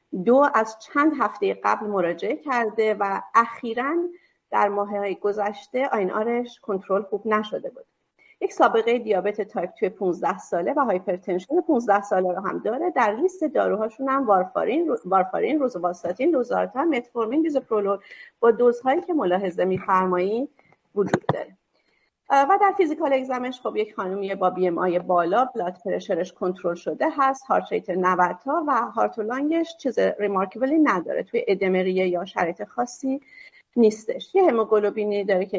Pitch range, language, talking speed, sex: 185-270 Hz, Persian, 145 wpm, female